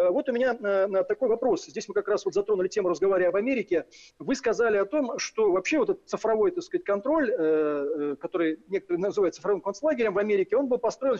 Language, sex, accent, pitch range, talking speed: Russian, male, native, 190-295 Hz, 200 wpm